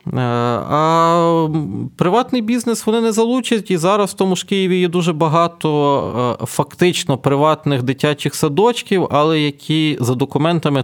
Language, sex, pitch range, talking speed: Ukrainian, male, 125-175 Hz, 125 wpm